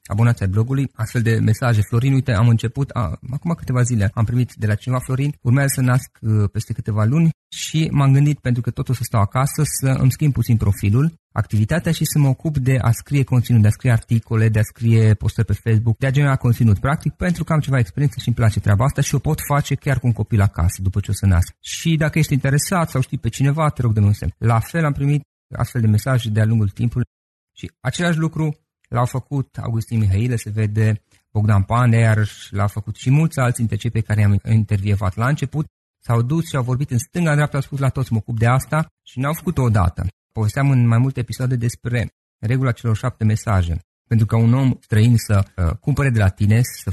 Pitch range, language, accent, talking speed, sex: 110-135 Hz, Romanian, native, 225 wpm, male